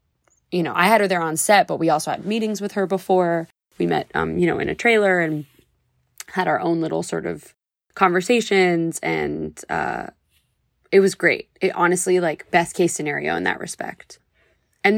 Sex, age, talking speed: female, 20-39, 190 wpm